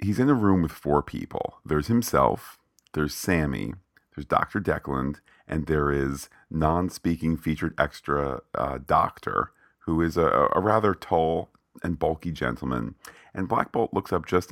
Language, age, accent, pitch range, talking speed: English, 40-59, American, 70-85 Hz, 155 wpm